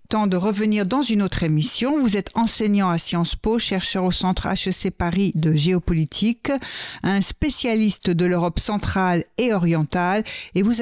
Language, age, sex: French, 60-79, female